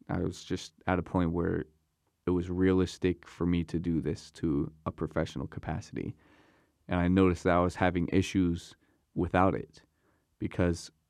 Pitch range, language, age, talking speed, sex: 85-100 Hz, English, 20-39, 160 wpm, male